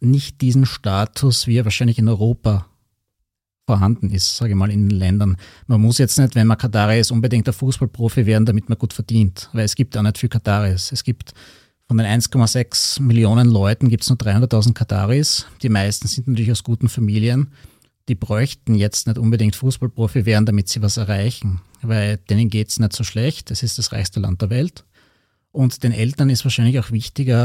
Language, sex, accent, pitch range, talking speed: German, male, Austrian, 110-125 Hz, 195 wpm